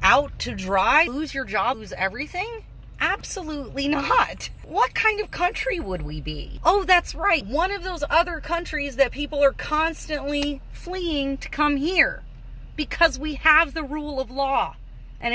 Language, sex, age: English, female, 30-49